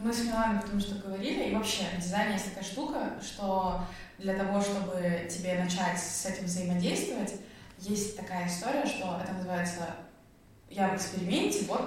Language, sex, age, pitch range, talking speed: Russian, female, 20-39, 185-215 Hz, 160 wpm